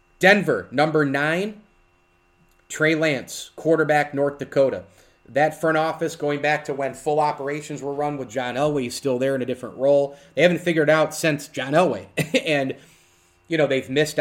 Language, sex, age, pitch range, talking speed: English, male, 30-49, 120-145 Hz, 175 wpm